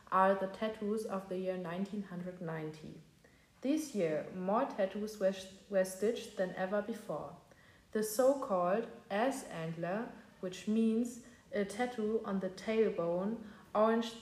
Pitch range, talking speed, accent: 190-225 Hz, 120 wpm, German